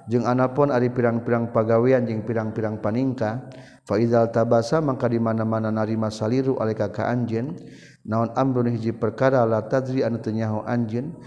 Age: 40-59